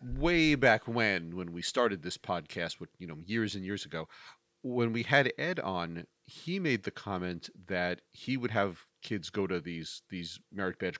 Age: 40-59